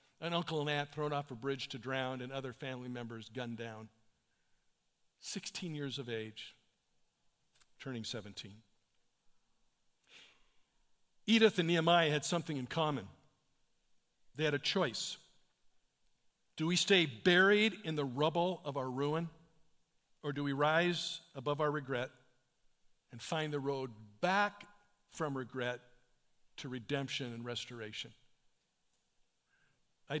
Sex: male